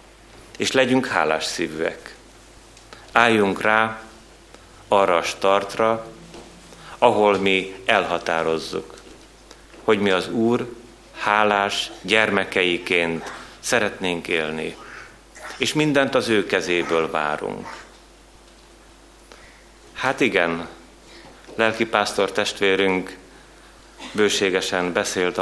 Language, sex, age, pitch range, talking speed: Hungarian, male, 30-49, 85-110 Hz, 75 wpm